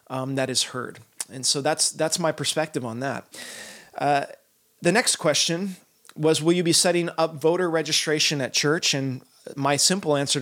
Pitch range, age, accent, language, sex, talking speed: 140-165 Hz, 20-39, American, English, male, 175 wpm